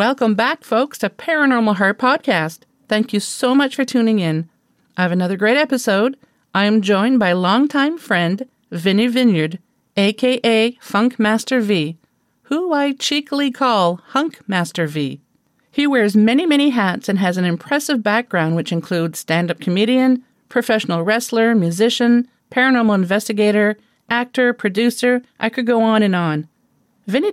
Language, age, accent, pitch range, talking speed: English, 40-59, American, 190-250 Hz, 145 wpm